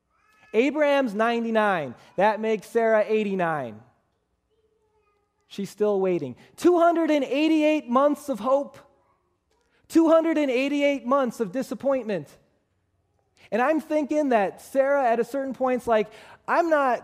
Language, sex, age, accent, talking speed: English, male, 20-39, American, 100 wpm